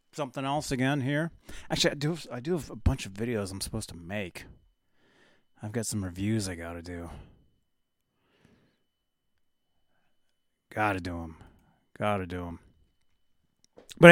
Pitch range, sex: 85-145 Hz, male